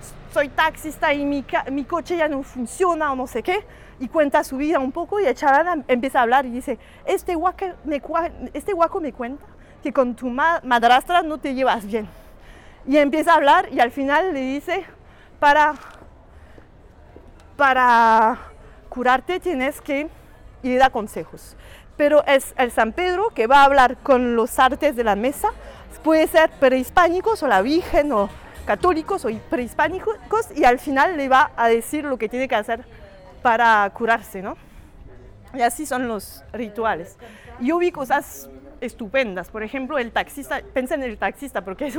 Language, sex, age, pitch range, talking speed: English, female, 30-49, 245-310 Hz, 170 wpm